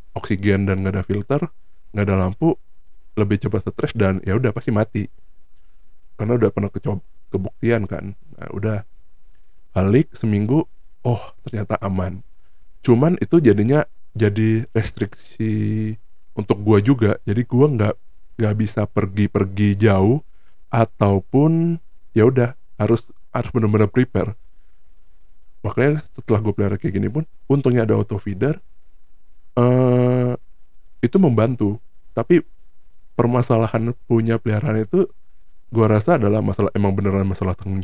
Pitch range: 95-115 Hz